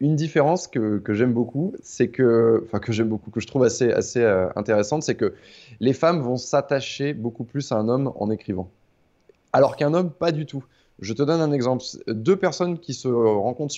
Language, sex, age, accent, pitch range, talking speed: French, male, 20-39, French, 110-150 Hz, 205 wpm